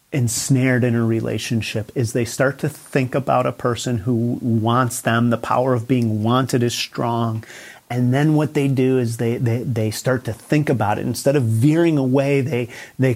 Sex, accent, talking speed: male, American, 190 wpm